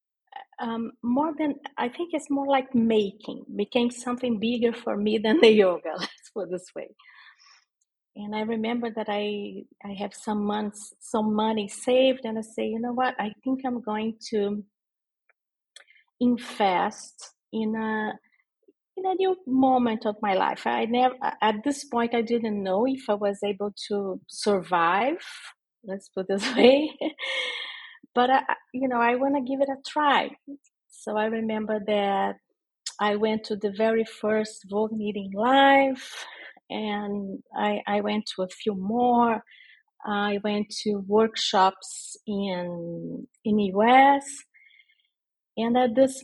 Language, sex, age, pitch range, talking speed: English, female, 40-59, 210-260 Hz, 155 wpm